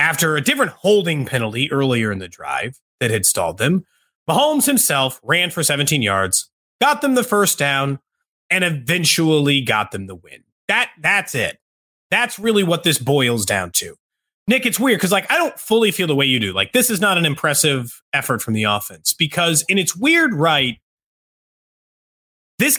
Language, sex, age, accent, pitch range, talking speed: English, male, 30-49, American, 135-205 Hz, 180 wpm